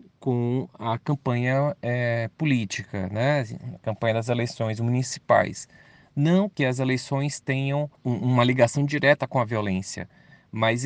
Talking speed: 135 wpm